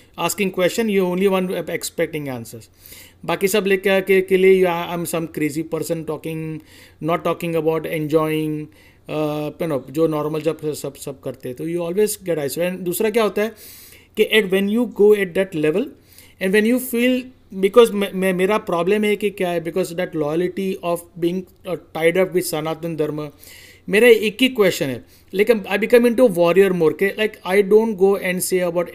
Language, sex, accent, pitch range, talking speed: Hindi, male, native, 160-210 Hz, 195 wpm